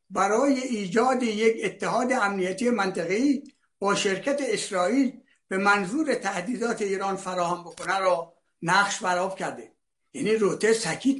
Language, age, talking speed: Persian, 60-79, 120 wpm